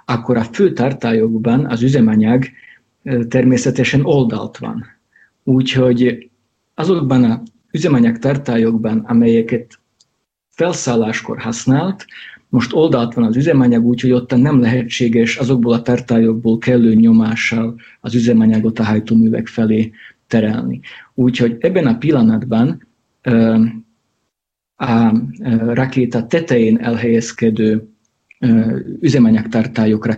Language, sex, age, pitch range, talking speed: Hungarian, male, 50-69, 115-125 Hz, 90 wpm